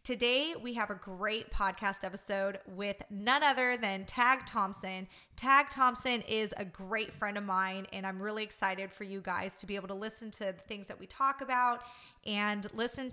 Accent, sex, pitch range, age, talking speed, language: American, female, 195-245 Hz, 20-39, 190 wpm, English